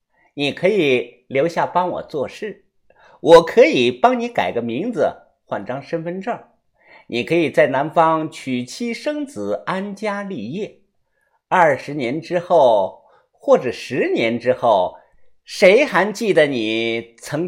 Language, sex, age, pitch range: Chinese, male, 50-69, 140-220 Hz